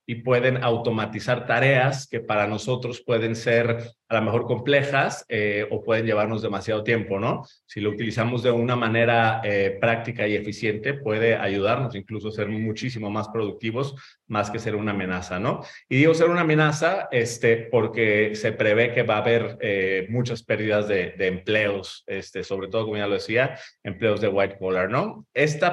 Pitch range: 110-130 Hz